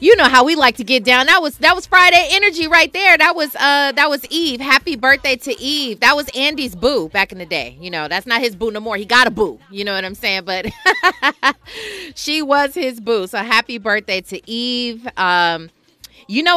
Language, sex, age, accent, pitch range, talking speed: English, female, 30-49, American, 180-275 Hz, 230 wpm